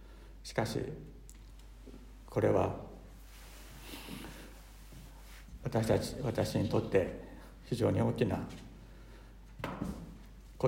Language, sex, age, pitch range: Japanese, male, 60-79, 120-160 Hz